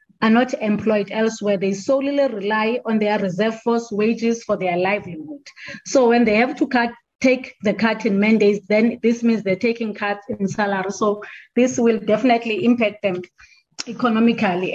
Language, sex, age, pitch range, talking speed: English, female, 30-49, 210-250 Hz, 165 wpm